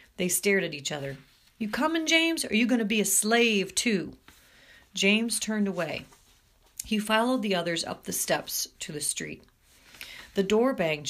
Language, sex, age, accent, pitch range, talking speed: English, female, 40-59, American, 175-230 Hz, 175 wpm